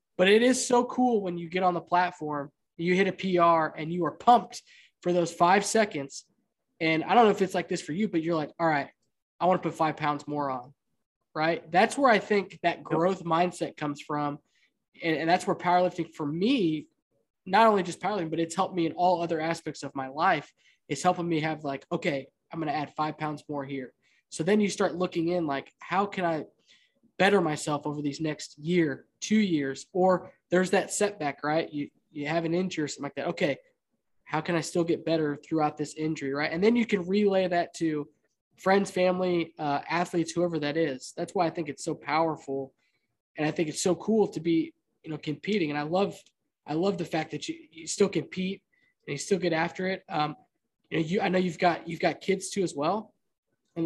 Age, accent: 20-39, American